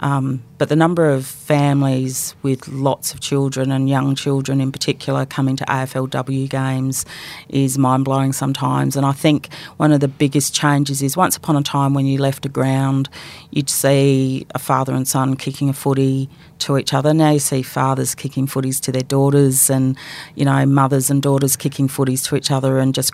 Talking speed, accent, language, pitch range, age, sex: 190 wpm, Australian, English, 130-145 Hz, 40-59, female